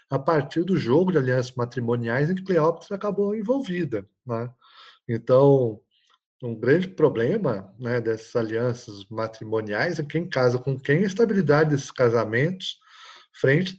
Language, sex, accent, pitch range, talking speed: Portuguese, male, Brazilian, 115-160 Hz, 135 wpm